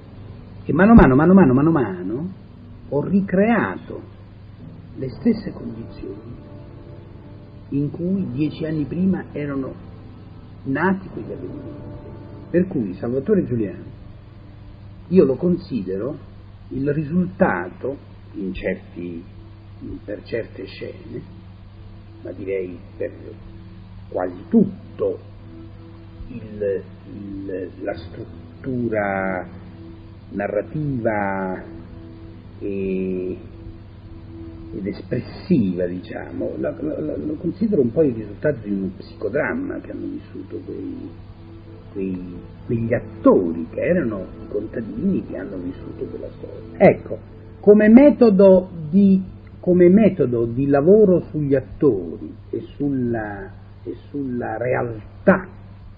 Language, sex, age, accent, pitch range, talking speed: Italian, male, 50-69, native, 100-140 Hz, 100 wpm